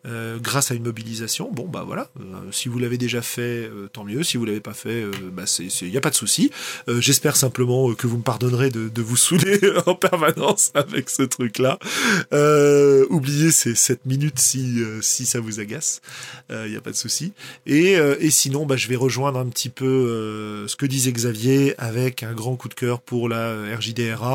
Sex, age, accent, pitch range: male, 20-39, French, 115-140 Hz